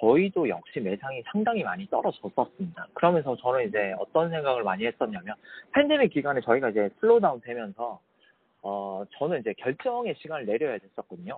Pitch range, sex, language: 120-195 Hz, male, Korean